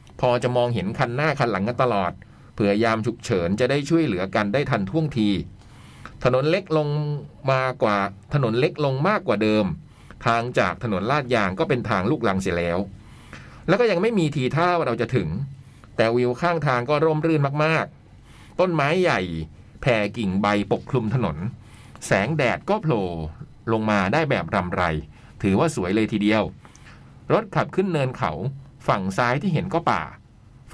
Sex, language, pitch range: male, Thai, 110-150 Hz